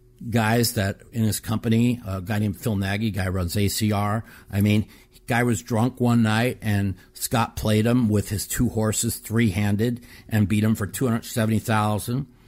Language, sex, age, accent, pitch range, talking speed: English, male, 50-69, American, 105-125 Hz, 175 wpm